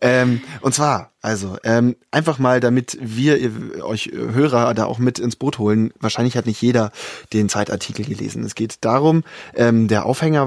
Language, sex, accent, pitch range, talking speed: German, male, German, 110-135 Hz, 170 wpm